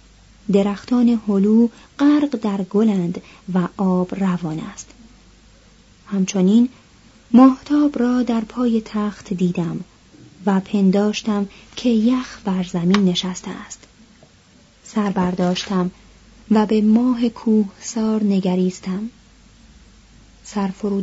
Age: 30-49